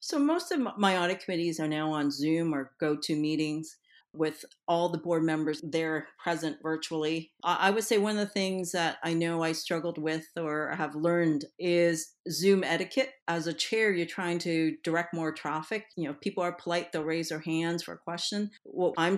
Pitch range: 155-180 Hz